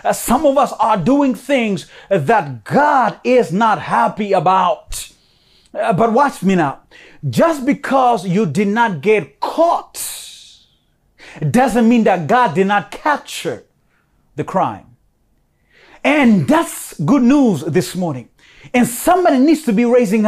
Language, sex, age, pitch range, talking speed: English, male, 30-49, 190-260 Hz, 130 wpm